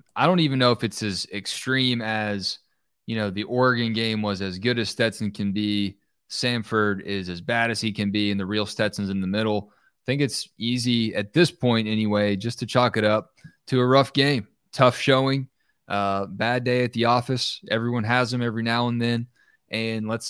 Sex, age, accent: male, 20-39, American